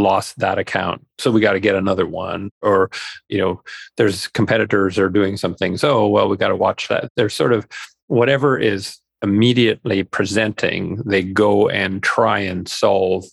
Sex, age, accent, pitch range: male, 40-59, American, 95-115 Hz